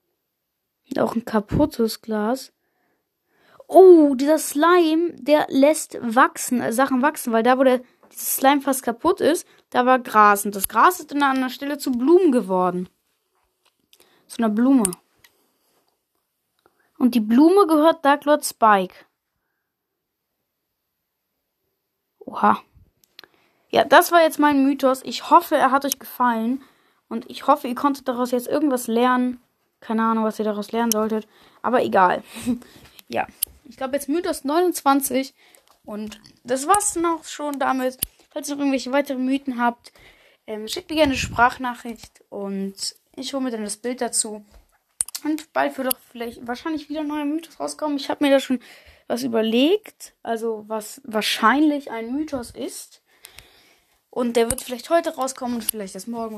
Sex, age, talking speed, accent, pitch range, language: female, 20-39, 150 wpm, German, 230-295 Hz, German